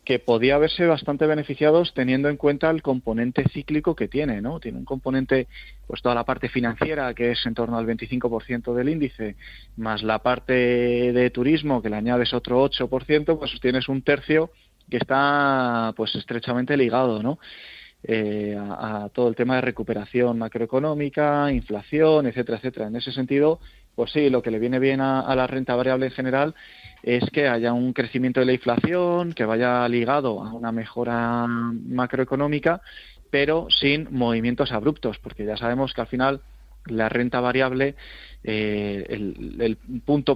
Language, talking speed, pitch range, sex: Spanish, 165 wpm, 115-135 Hz, male